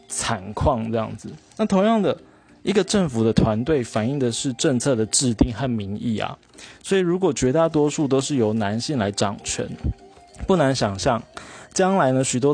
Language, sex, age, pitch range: Chinese, male, 20-39, 110-150 Hz